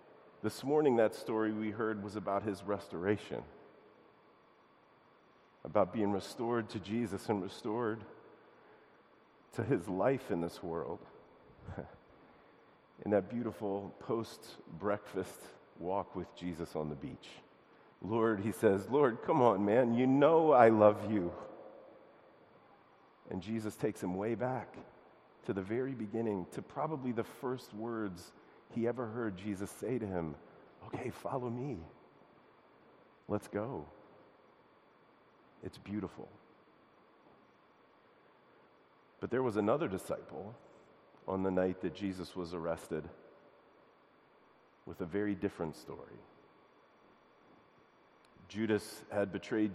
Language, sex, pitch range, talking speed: English, male, 95-115 Hz, 115 wpm